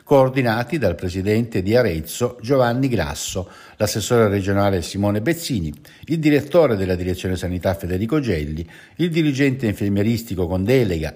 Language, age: Italian, 60-79